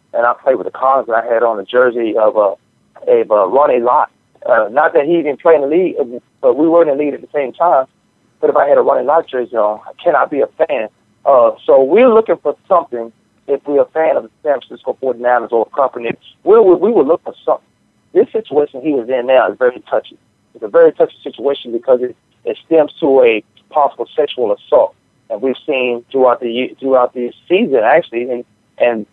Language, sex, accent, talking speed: English, male, American, 225 wpm